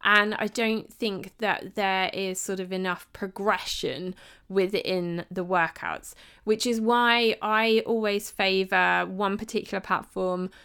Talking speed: 130 wpm